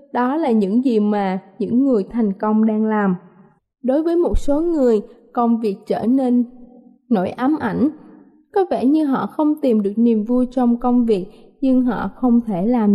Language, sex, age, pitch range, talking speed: Vietnamese, female, 20-39, 220-280 Hz, 185 wpm